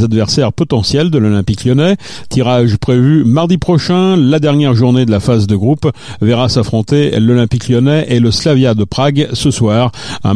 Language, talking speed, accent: French, 170 wpm, French